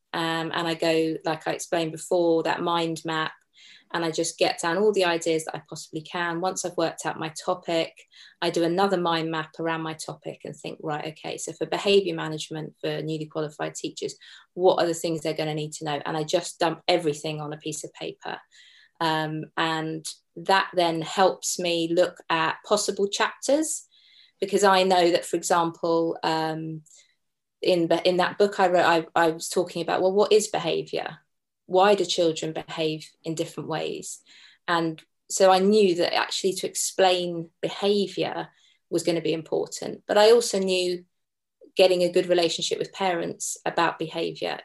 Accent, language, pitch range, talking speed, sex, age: British, English, 160-185 Hz, 180 wpm, female, 20-39